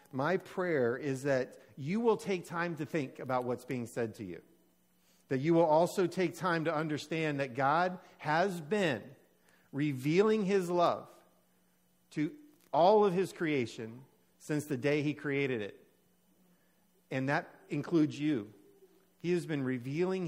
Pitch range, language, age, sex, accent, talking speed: 135-175 Hz, English, 50-69, male, American, 150 wpm